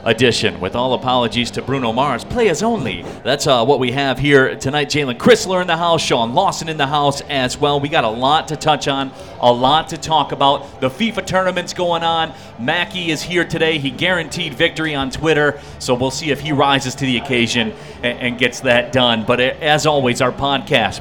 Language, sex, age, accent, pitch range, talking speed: English, male, 40-59, American, 125-150 Hz, 210 wpm